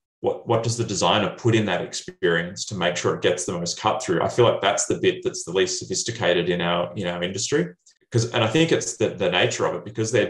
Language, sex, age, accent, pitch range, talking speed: English, male, 30-49, Australian, 90-120 Hz, 255 wpm